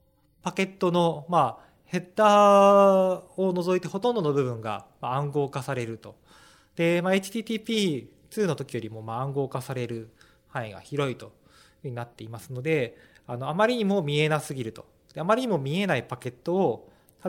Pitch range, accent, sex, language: 120-180 Hz, native, male, Japanese